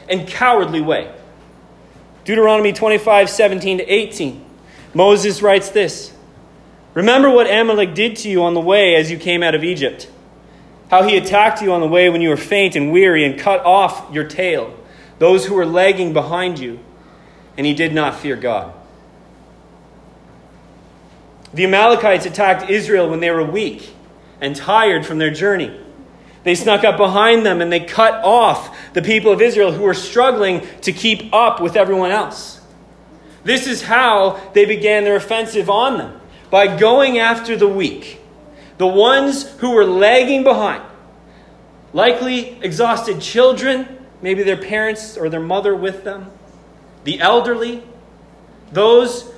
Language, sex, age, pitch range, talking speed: English, male, 30-49, 180-225 Hz, 150 wpm